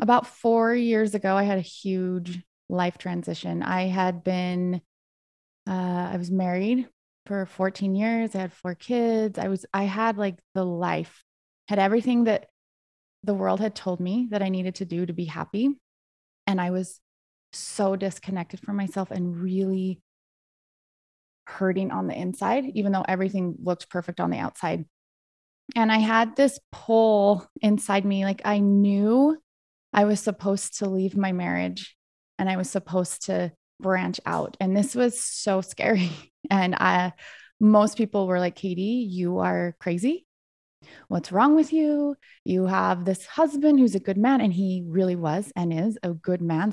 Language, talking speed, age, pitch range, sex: English, 165 wpm, 20-39, 180-215 Hz, female